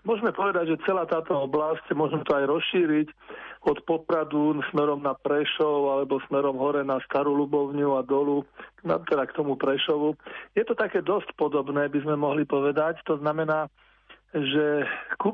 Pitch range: 145-160 Hz